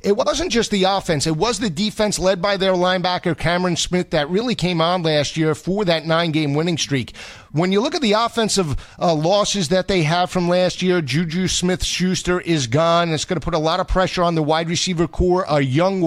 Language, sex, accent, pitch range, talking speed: English, male, American, 160-195 Hz, 220 wpm